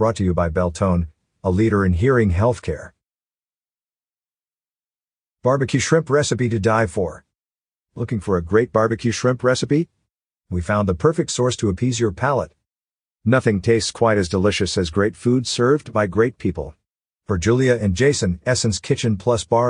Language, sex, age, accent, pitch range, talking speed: English, male, 50-69, American, 95-125 Hz, 160 wpm